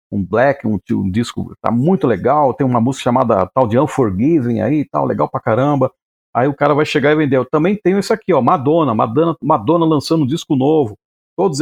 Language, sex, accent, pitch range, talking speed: Portuguese, male, Brazilian, 120-185 Hz, 210 wpm